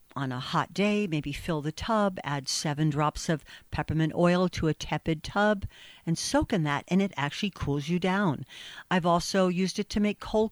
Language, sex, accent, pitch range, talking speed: English, female, American, 150-195 Hz, 200 wpm